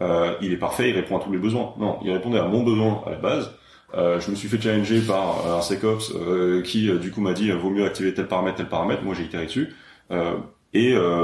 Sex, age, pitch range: male, 30-49, 90-110 Hz